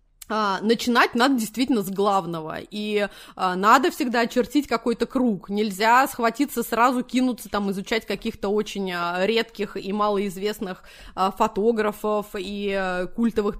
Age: 20-39